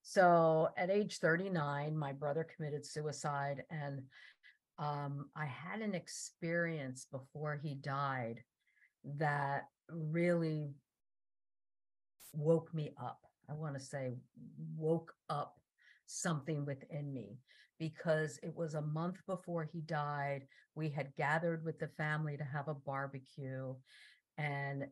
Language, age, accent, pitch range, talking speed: English, 50-69, American, 135-160 Hz, 120 wpm